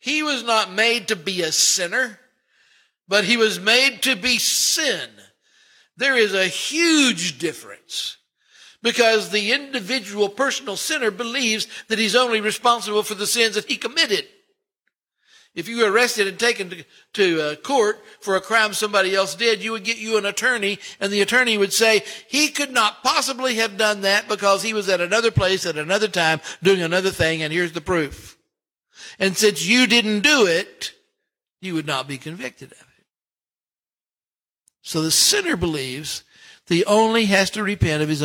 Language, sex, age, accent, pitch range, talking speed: English, male, 60-79, American, 190-260 Hz, 175 wpm